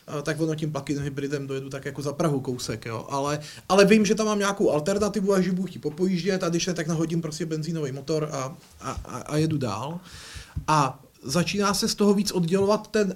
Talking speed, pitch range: 210 wpm, 155-185 Hz